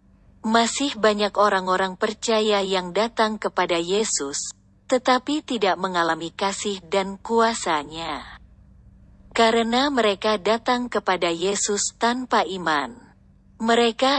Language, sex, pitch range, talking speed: Indonesian, female, 175-230 Hz, 95 wpm